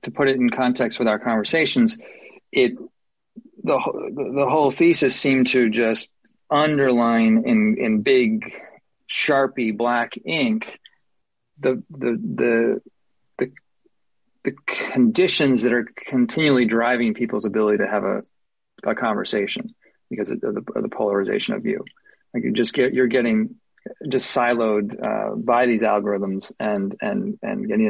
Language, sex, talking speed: English, male, 140 wpm